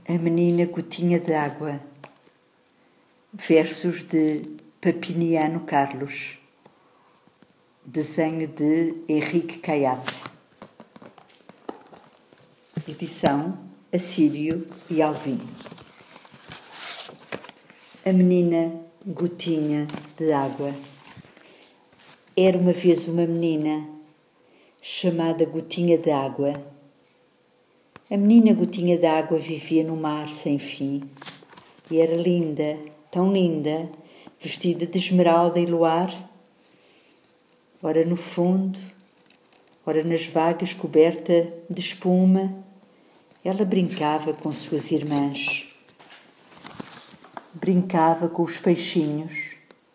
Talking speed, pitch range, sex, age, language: 80 wpm, 155-175 Hz, female, 50-69, English